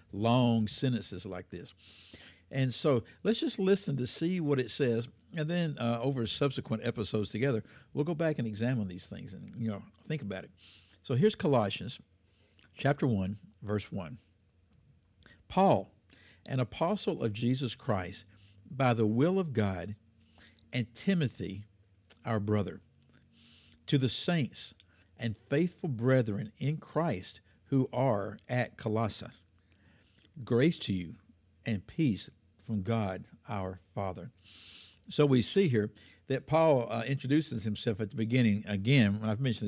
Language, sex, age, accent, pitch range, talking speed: English, male, 60-79, American, 100-135 Hz, 140 wpm